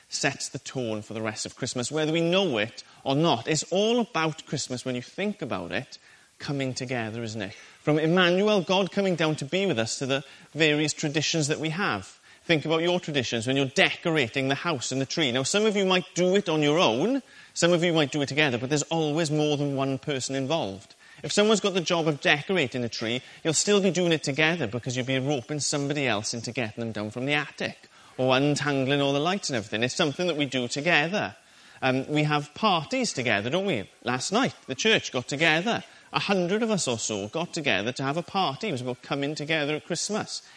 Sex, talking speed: male, 225 wpm